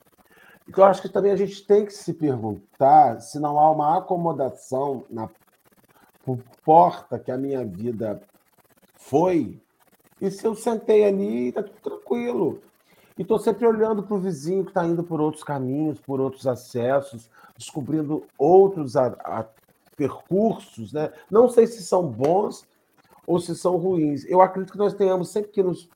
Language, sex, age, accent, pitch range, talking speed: Portuguese, male, 40-59, Brazilian, 130-195 Hz, 160 wpm